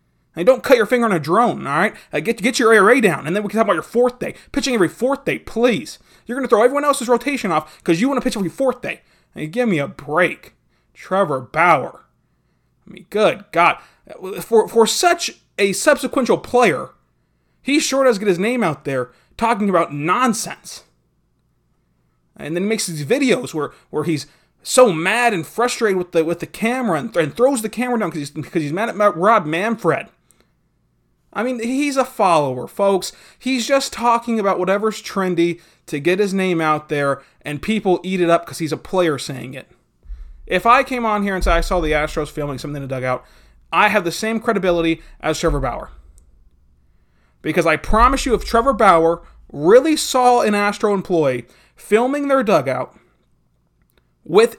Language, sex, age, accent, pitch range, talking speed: English, male, 20-39, American, 150-235 Hz, 190 wpm